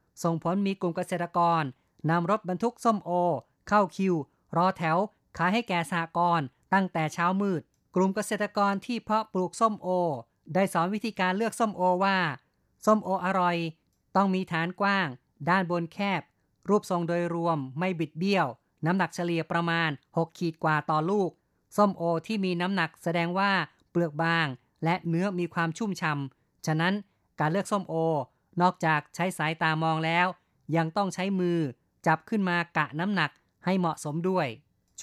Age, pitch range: 20-39, 165-190 Hz